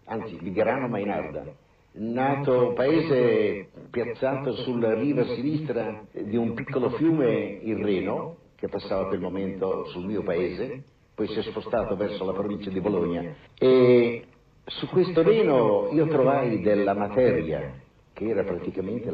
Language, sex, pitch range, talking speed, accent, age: Italian, male, 105-140 Hz, 140 wpm, native, 50-69